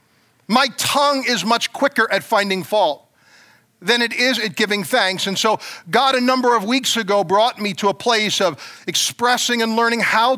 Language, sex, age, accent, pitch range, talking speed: English, male, 50-69, American, 185-240 Hz, 185 wpm